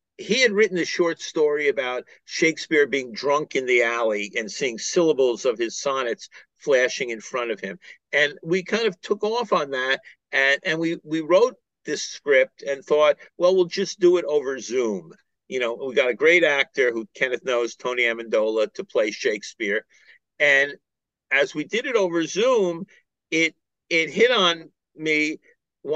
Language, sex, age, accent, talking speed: English, male, 50-69, American, 175 wpm